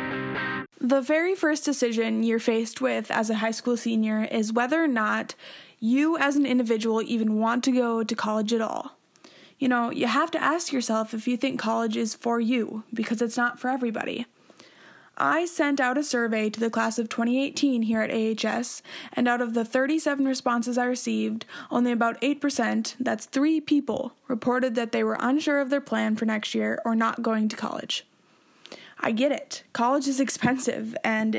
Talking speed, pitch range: 185 wpm, 225-260 Hz